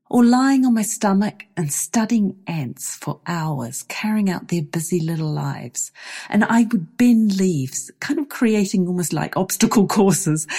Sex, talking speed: female, 160 wpm